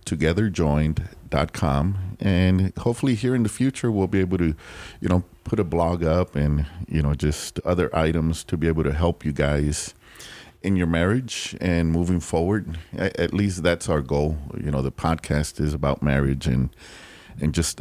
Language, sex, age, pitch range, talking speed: English, male, 40-59, 75-95 Hz, 170 wpm